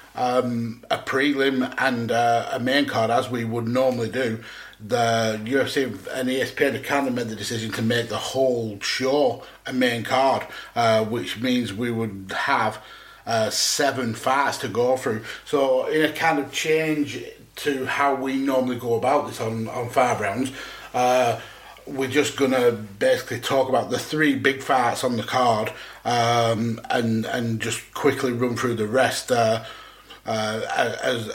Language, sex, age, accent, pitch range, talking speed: English, male, 30-49, British, 120-135 Hz, 165 wpm